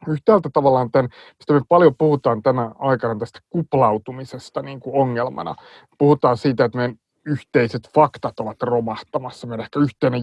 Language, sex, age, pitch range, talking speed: Finnish, male, 30-49, 115-145 Hz, 130 wpm